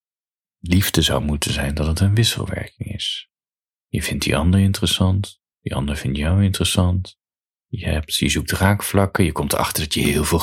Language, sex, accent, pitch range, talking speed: Dutch, male, Dutch, 80-105 Hz, 180 wpm